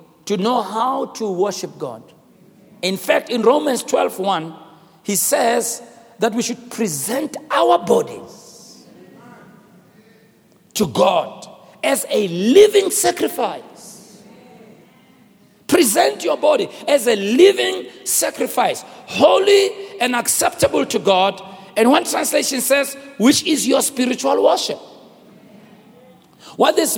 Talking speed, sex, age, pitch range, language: 105 wpm, male, 50-69, 220-300 Hz, English